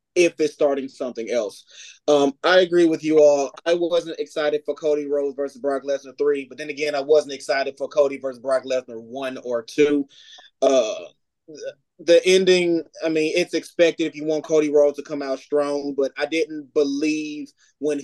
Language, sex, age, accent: English, male, 20-39, American